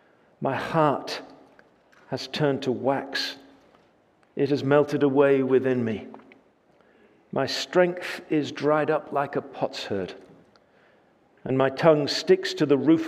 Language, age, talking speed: English, 50-69, 125 wpm